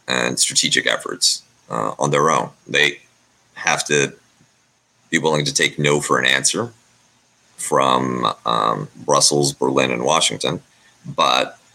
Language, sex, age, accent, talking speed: English, male, 30-49, American, 130 wpm